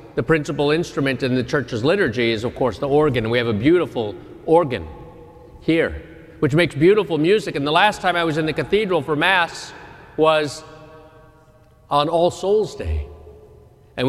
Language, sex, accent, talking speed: English, male, American, 165 wpm